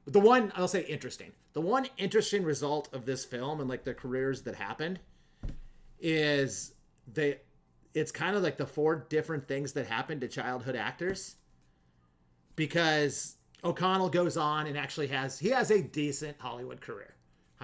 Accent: American